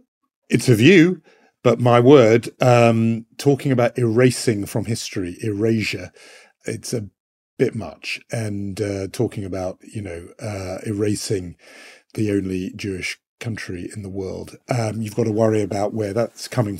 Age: 50-69